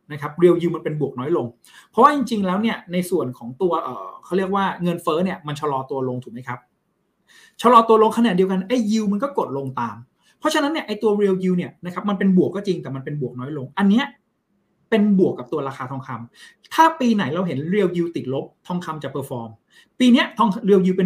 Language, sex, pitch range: Thai, male, 155-220 Hz